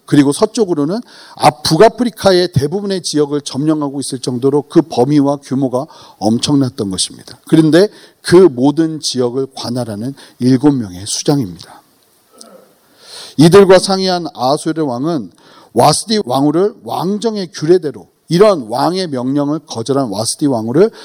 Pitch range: 125-175 Hz